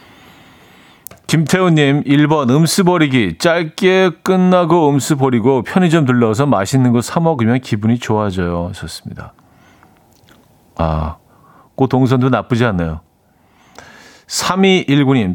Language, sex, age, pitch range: Korean, male, 40-59, 120-165 Hz